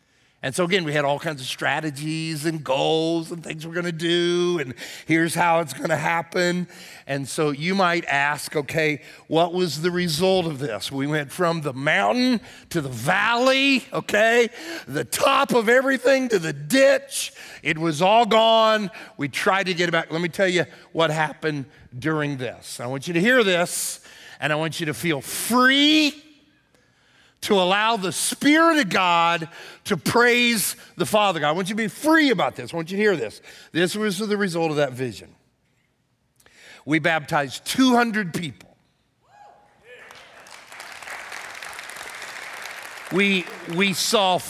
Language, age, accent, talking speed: English, 50-69, American, 165 wpm